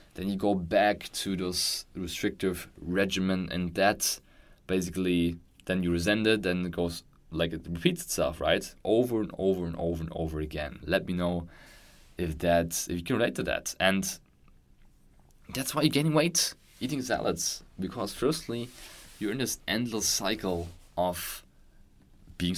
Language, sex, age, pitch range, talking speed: English, male, 20-39, 85-95 Hz, 155 wpm